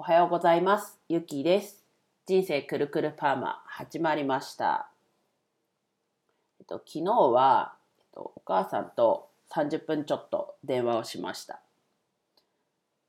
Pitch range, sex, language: 150-220 Hz, female, Japanese